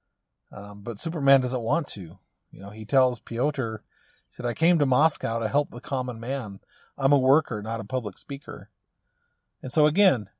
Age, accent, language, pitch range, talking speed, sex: 40-59, American, English, 115-150 Hz, 185 wpm, male